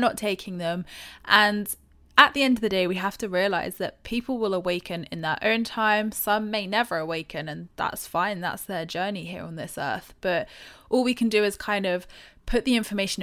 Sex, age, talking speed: female, 20-39, 215 wpm